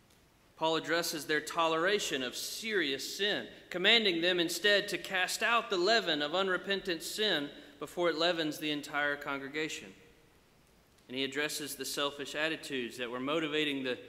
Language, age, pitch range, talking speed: English, 40-59, 140-180 Hz, 145 wpm